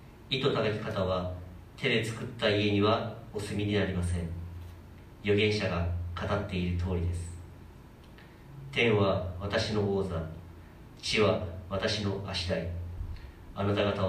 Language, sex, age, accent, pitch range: Japanese, male, 40-59, native, 85-105 Hz